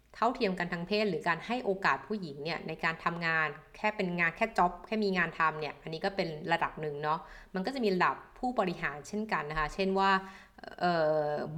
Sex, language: female, Thai